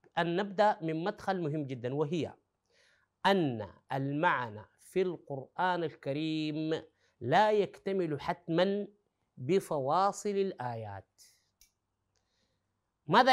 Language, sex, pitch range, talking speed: Arabic, male, 140-205 Hz, 80 wpm